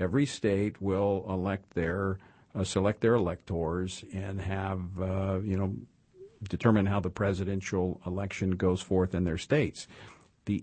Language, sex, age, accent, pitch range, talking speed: English, male, 50-69, American, 95-120 Hz, 140 wpm